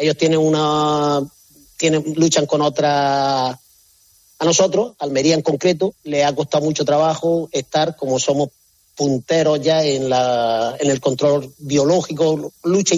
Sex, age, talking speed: male, 40-59, 135 wpm